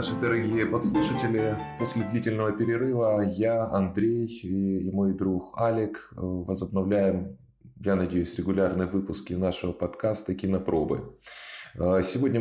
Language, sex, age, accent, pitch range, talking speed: Russian, male, 20-39, native, 95-110 Hz, 100 wpm